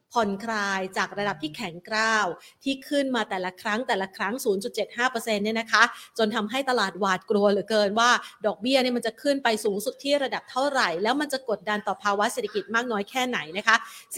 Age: 30-49